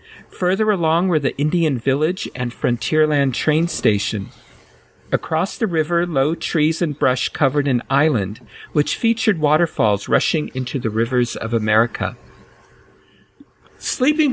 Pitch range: 125-170 Hz